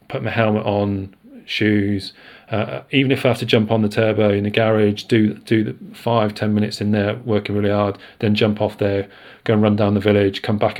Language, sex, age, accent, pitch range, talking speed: English, male, 40-59, British, 105-120 Hz, 220 wpm